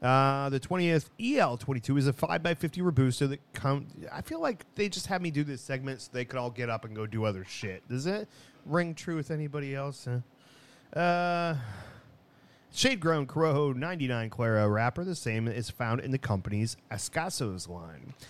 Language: English